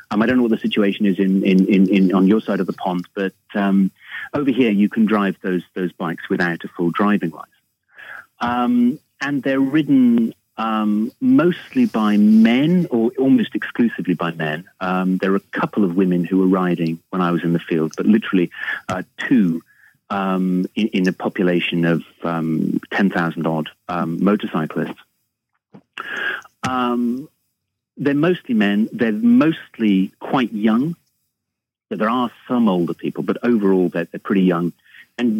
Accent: British